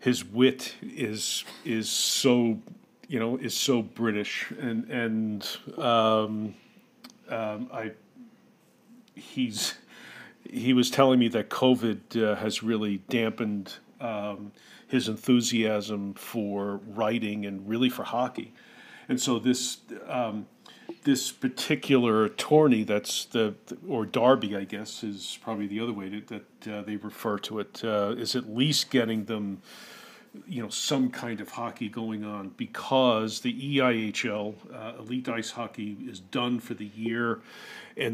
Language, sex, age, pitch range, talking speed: English, male, 40-59, 105-125 Hz, 140 wpm